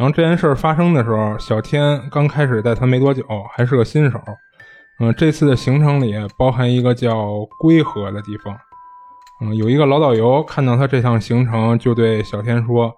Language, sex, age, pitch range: Chinese, male, 20-39, 115-150 Hz